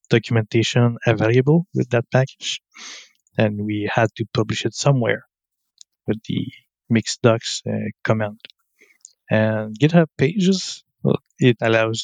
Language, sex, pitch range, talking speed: English, male, 110-130 Hz, 115 wpm